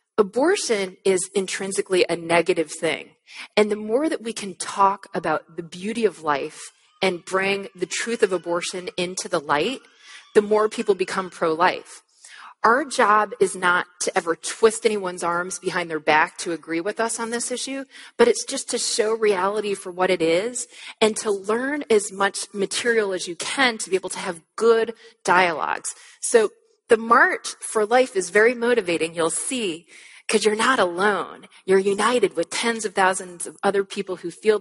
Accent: American